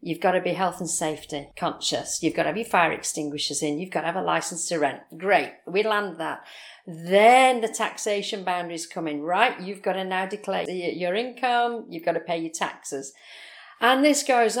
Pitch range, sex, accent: 185-240 Hz, female, British